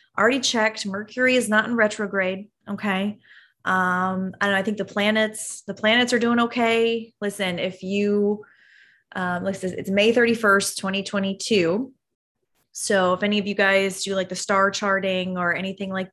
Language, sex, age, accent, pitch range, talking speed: English, female, 20-39, American, 185-235 Hz, 155 wpm